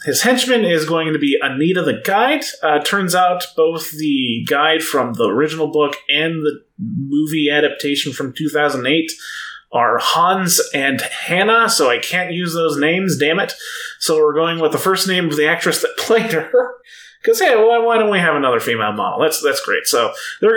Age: 30-49